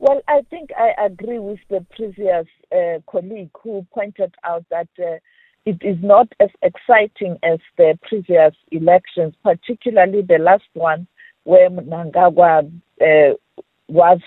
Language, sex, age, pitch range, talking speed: English, female, 50-69, 170-220 Hz, 135 wpm